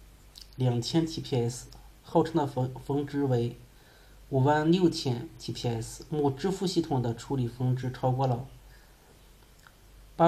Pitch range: 120-145 Hz